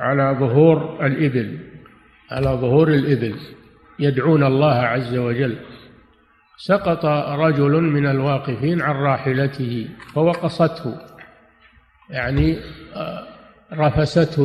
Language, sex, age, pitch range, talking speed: Arabic, male, 50-69, 130-160 Hz, 80 wpm